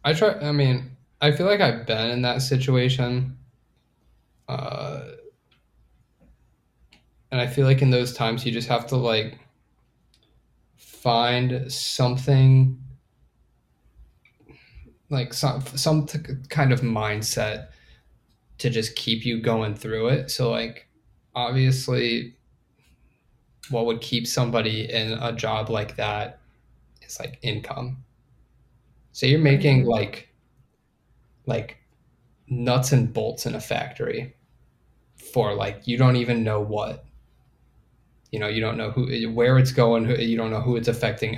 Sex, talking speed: male, 130 wpm